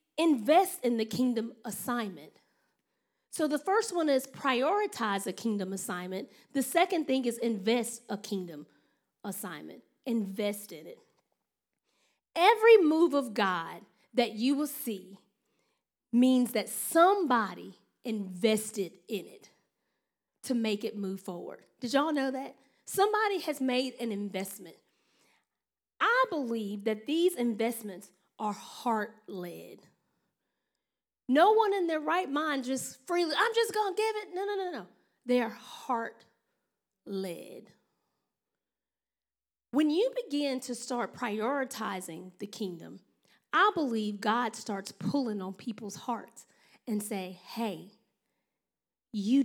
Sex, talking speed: female, 125 wpm